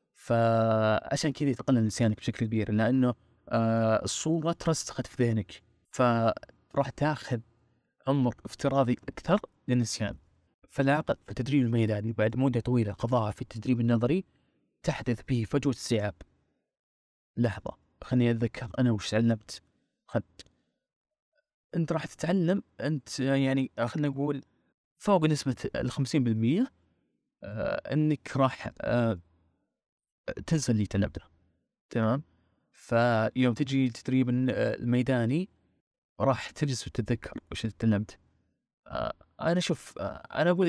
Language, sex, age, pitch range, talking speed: Arabic, male, 30-49, 110-140 Hz, 105 wpm